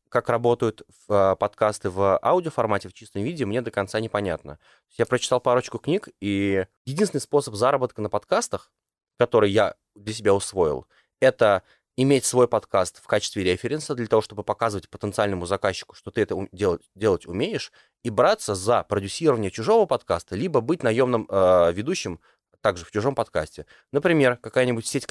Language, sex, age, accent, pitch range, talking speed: Russian, male, 20-39, native, 95-125 Hz, 155 wpm